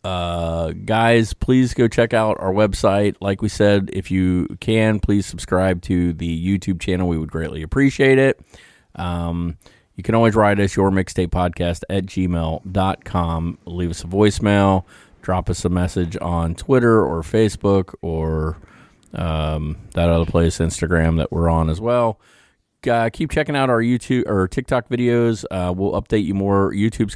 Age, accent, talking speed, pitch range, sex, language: 30-49, American, 165 wpm, 80-105 Hz, male, English